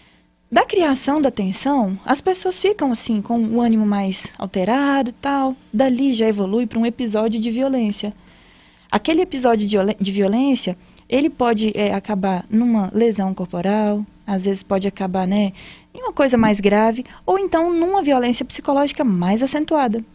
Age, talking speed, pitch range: 20-39, 150 wpm, 210-270 Hz